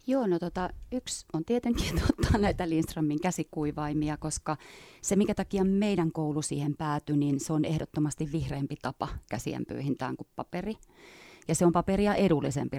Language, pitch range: Finnish, 145-165 Hz